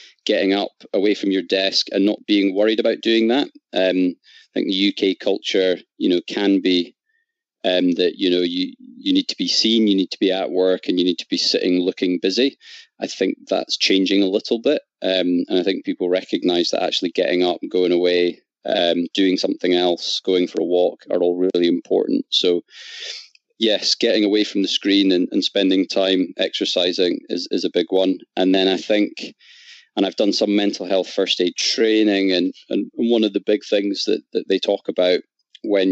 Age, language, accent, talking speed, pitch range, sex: 20-39, English, British, 205 wpm, 90-110 Hz, male